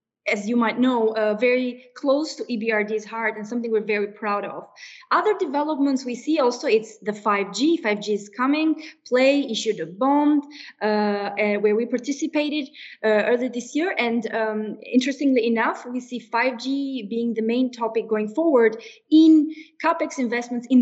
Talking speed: 160 wpm